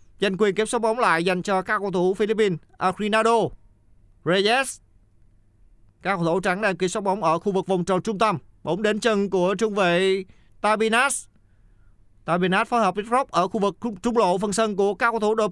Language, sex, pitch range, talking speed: Vietnamese, male, 150-205 Hz, 195 wpm